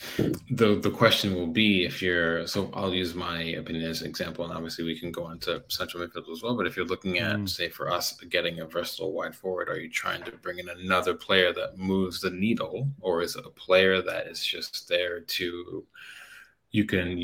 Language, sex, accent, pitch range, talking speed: English, male, American, 85-95 Hz, 215 wpm